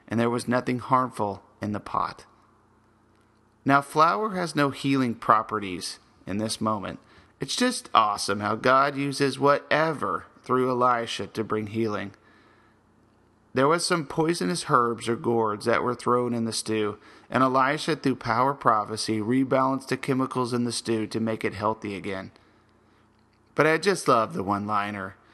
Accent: American